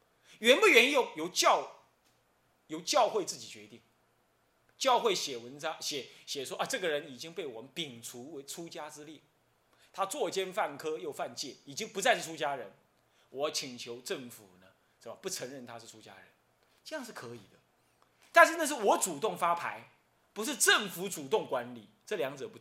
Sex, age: male, 30-49